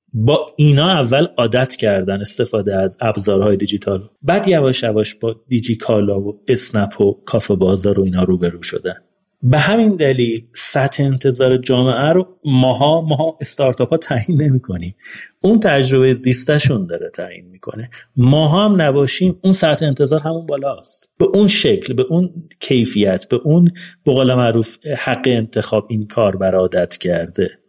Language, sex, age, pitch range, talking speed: Persian, male, 40-59, 115-175 Hz, 150 wpm